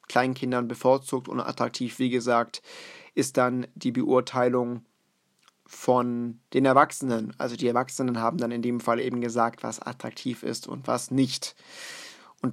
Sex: male